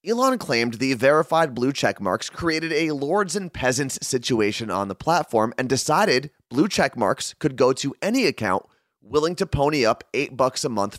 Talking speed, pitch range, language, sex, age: 185 wpm, 120-165 Hz, English, male, 30-49